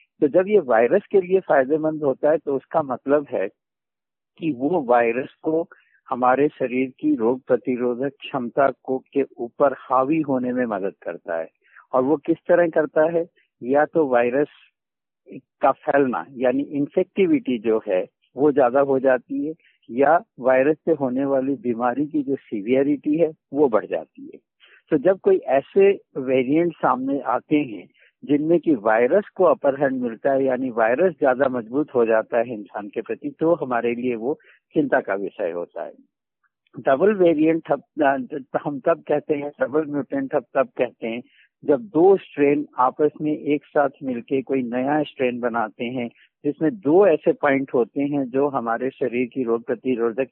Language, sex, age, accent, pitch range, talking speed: Hindi, male, 60-79, native, 130-155 Hz, 165 wpm